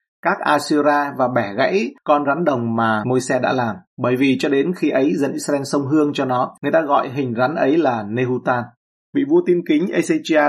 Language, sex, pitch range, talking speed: Vietnamese, male, 120-155 Hz, 210 wpm